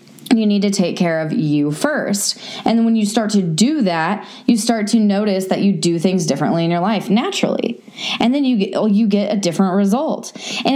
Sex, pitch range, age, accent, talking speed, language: female, 180-225 Hz, 20-39, American, 220 wpm, English